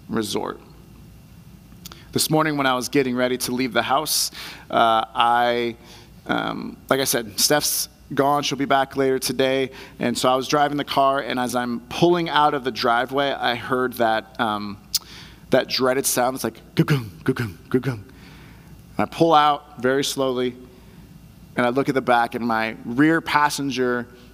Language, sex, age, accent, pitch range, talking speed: English, male, 30-49, American, 130-170 Hz, 165 wpm